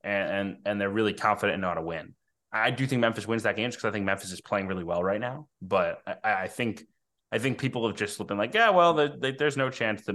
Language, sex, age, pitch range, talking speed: English, male, 20-39, 100-125 Hz, 265 wpm